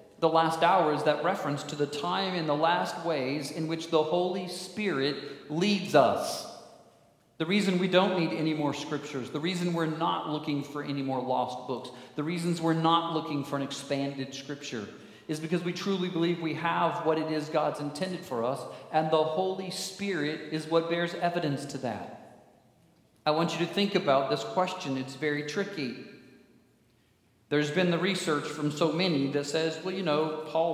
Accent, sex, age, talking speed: American, male, 40-59, 185 wpm